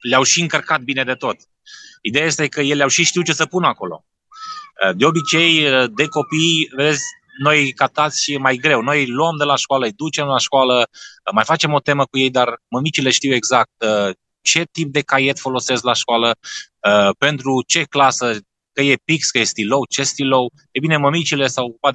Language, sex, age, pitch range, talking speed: Romanian, male, 20-39, 115-145 Hz, 190 wpm